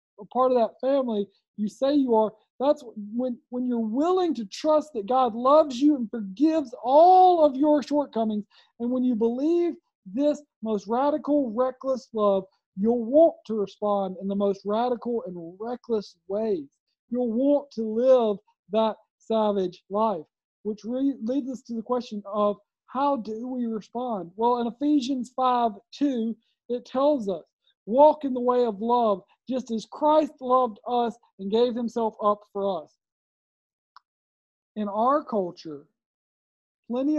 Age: 40-59